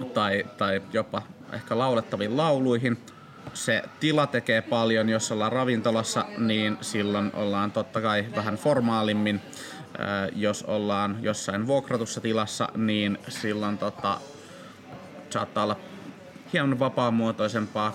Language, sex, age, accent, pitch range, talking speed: Finnish, male, 30-49, native, 105-125 Hz, 105 wpm